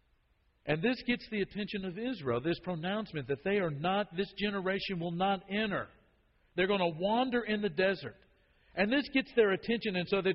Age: 50-69